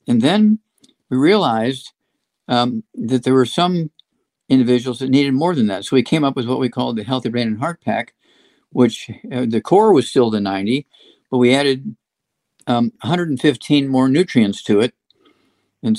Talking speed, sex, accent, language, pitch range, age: 175 wpm, male, American, English, 120-150 Hz, 50-69